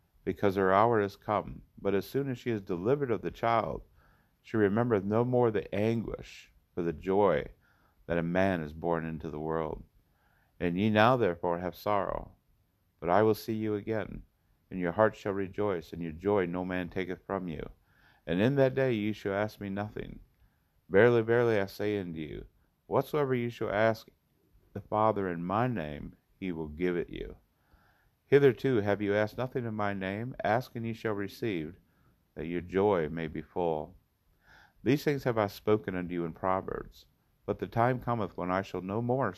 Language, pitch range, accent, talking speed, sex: English, 85-110 Hz, American, 185 wpm, male